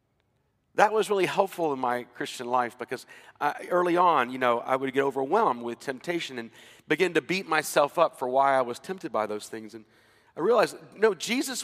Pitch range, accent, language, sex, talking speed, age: 120-165 Hz, American, English, male, 200 wpm, 40-59